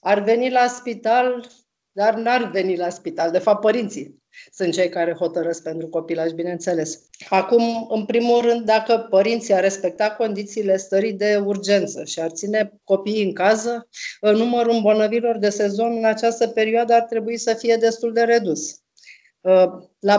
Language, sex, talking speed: Romanian, female, 160 wpm